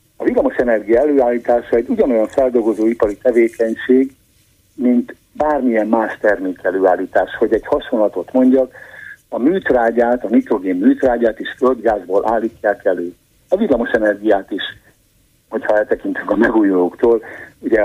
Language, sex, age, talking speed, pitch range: Hungarian, male, 60-79, 115 wpm, 105-150 Hz